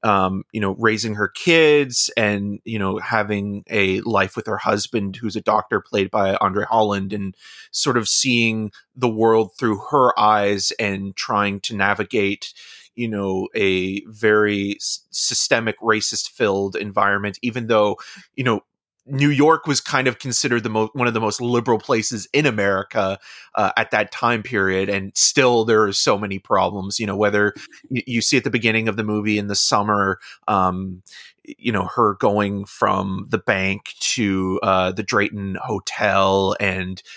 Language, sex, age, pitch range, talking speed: English, male, 30-49, 100-120 Hz, 170 wpm